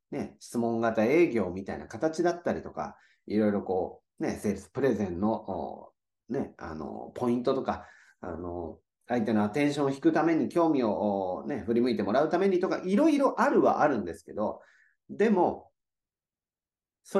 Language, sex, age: Japanese, male, 40-59